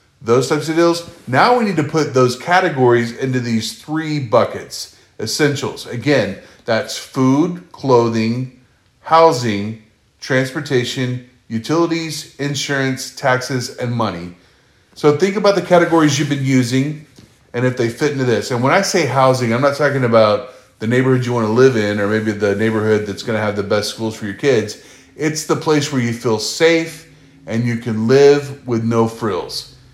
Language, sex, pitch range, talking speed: English, male, 115-145 Hz, 165 wpm